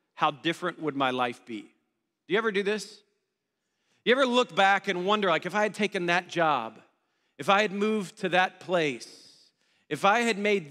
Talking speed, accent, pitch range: 195 wpm, American, 160-205 Hz